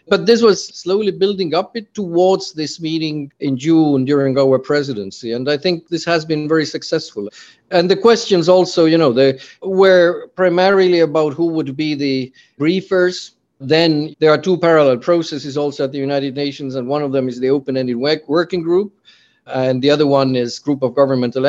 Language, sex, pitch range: English, male, 135-170 Hz